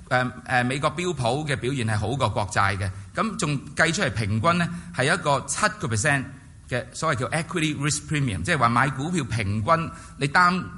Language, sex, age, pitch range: Chinese, male, 30-49, 110-145 Hz